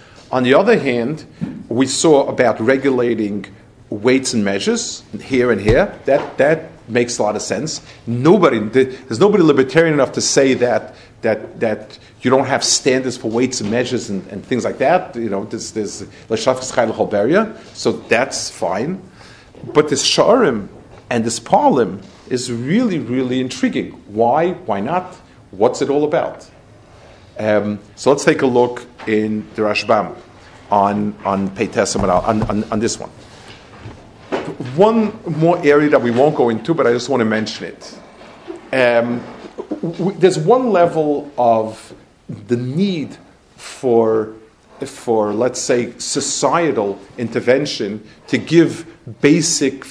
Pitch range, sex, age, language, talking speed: 110-145 Hz, male, 40-59, English, 140 wpm